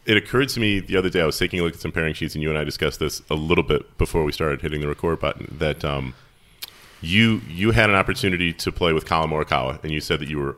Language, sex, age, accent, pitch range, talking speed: English, male, 30-49, American, 75-95 Hz, 285 wpm